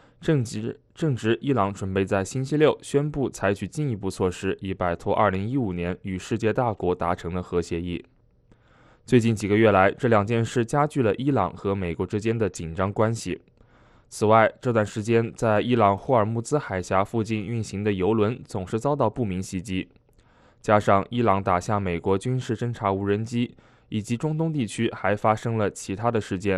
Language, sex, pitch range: English, male, 95-120 Hz